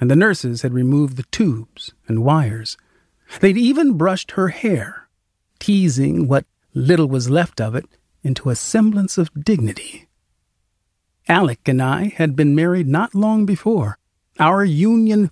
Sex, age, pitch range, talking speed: male, 40-59, 115-180 Hz, 145 wpm